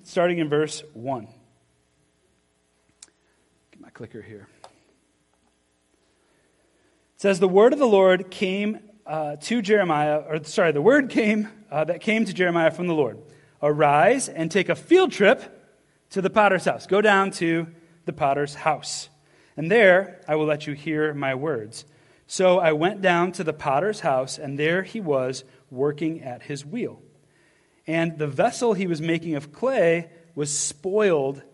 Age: 30-49